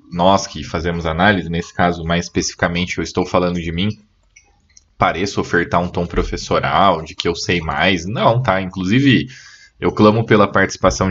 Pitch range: 85-110 Hz